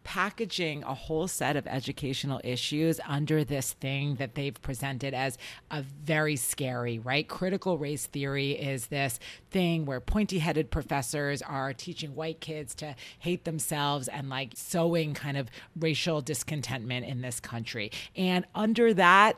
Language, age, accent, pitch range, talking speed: English, 40-59, American, 135-195 Hz, 145 wpm